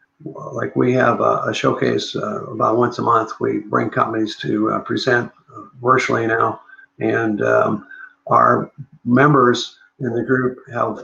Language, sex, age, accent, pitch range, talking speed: English, male, 50-69, American, 120-145 Hz, 145 wpm